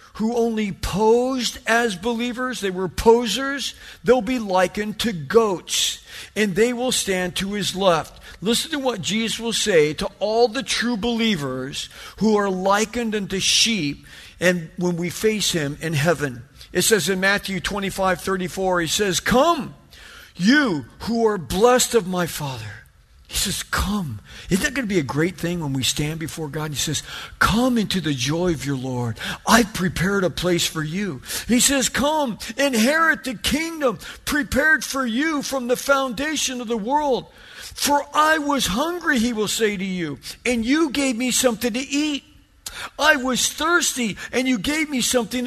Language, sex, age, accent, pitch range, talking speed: English, male, 50-69, American, 185-265 Hz, 170 wpm